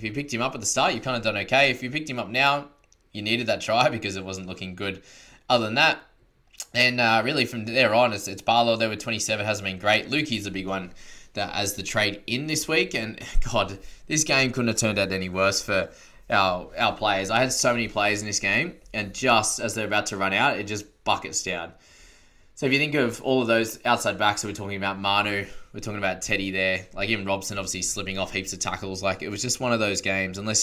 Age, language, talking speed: 20-39, English, 255 wpm